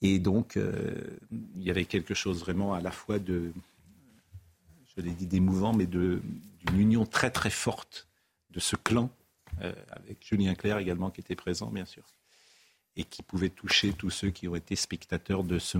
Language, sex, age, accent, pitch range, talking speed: French, male, 50-69, French, 90-120 Hz, 185 wpm